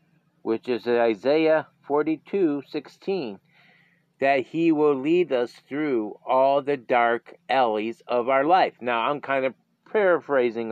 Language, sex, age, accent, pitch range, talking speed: English, male, 40-59, American, 120-170 Hz, 135 wpm